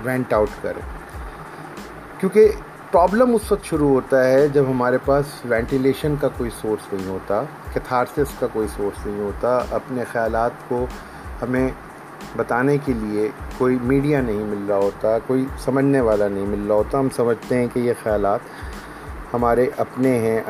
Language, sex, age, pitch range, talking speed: Urdu, male, 30-49, 105-135 Hz, 160 wpm